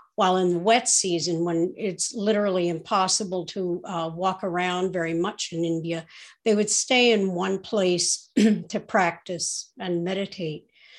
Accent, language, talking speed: American, English, 145 wpm